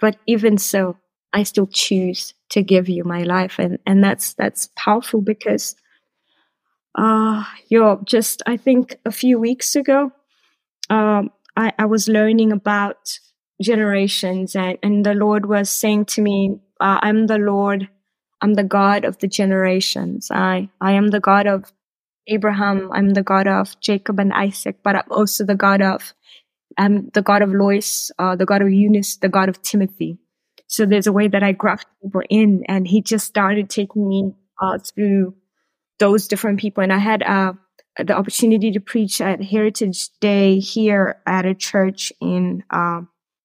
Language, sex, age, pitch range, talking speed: English, female, 20-39, 195-215 Hz, 170 wpm